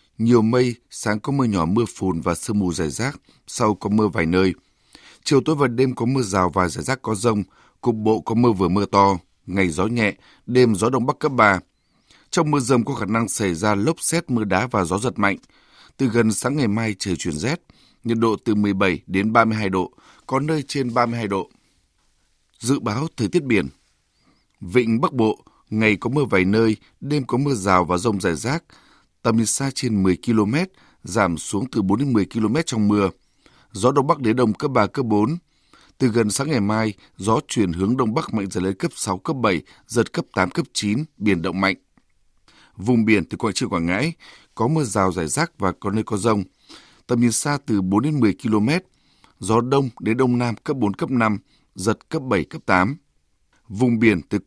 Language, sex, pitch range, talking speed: Vietnamese, male, 100-125 Hz, 215 wpm